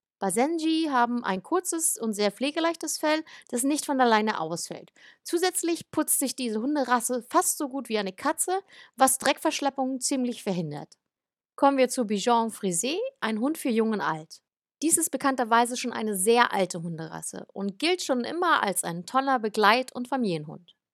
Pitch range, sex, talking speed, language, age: 210-295 Hz, female, 165 wpm, German, 30-49